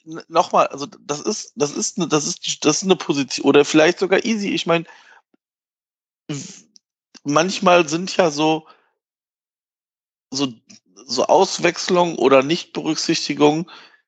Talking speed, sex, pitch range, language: 120 wpm, male, 135-195 Hz, German